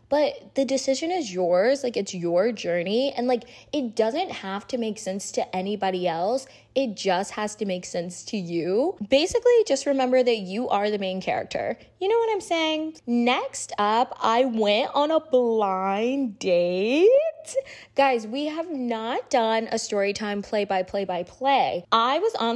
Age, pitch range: 20-39, 200-285 Hz